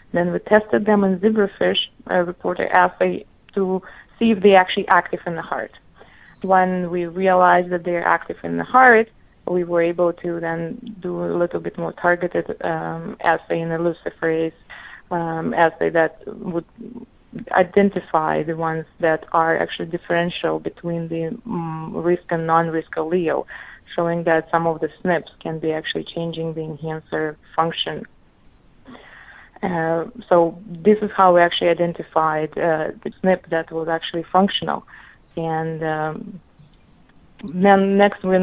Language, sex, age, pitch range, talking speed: English, female, 20-39, 165-195 Hz, 145 wpm